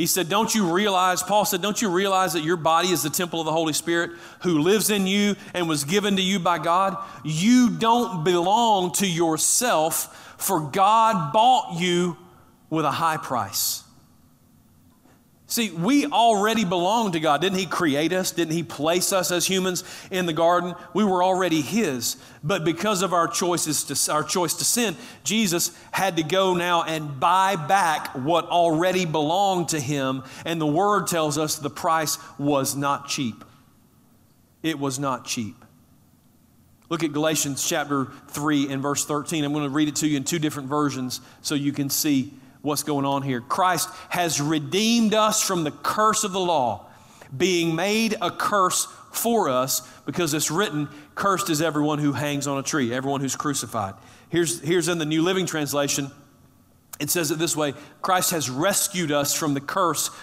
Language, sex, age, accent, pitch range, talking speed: English, male, 40-59, American, 145-185 Hz, 180 wpm